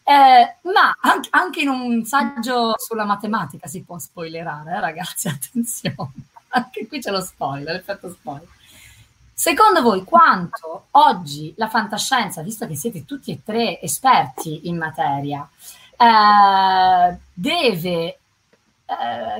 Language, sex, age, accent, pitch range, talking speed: Italian, female, 30-49, native, 165-255 Hz, 120 wpm